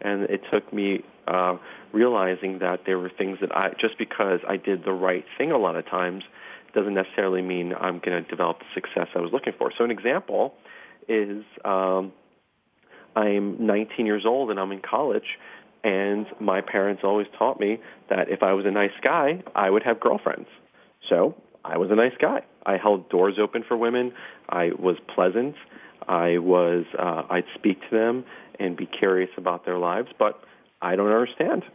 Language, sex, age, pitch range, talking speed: English, male, 40-59, 95-110 Hz, 185 wpm